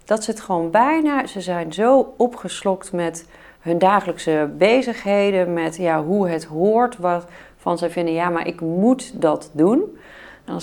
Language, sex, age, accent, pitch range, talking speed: Dutch, female, 40-59, Dutch, 165-210 Hz, 170 wpm